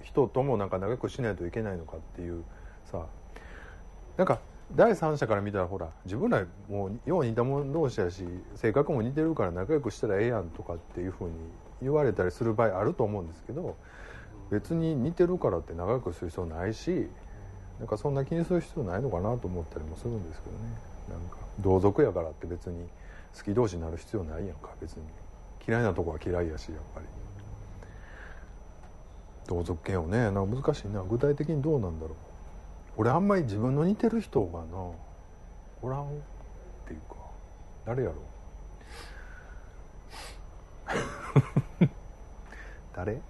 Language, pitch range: Japanese, 85-110 Hz